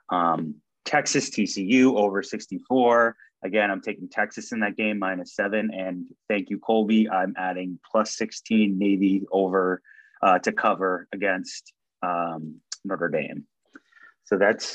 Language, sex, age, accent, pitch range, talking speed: English, male, 30-49, American, 95-115 Hz, 135 wpm